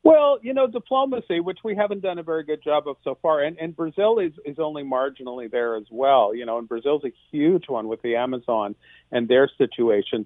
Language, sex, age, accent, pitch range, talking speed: English, male, 50-69, American, 130-210 Hz, 220 wpm